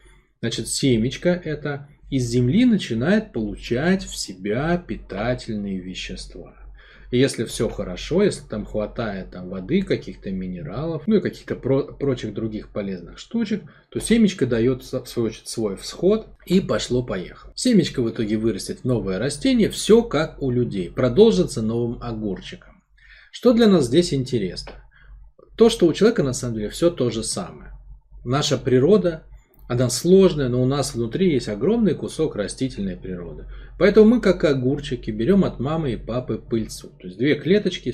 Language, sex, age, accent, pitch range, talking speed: Russian, male, 20-39, native, 115-175 Hz, 145 wpm